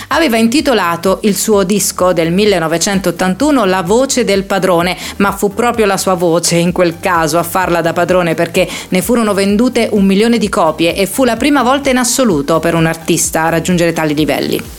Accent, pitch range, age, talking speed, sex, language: native, 170-225 Hz, 30-49, 185 wpm, female, Italian